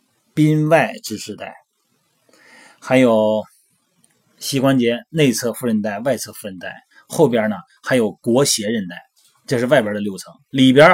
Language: Chinese